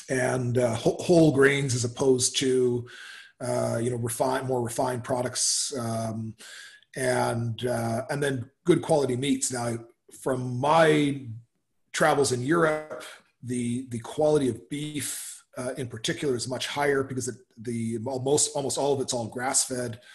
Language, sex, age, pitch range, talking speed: English, male, 30-49, 120-140 Hz, 145 wpm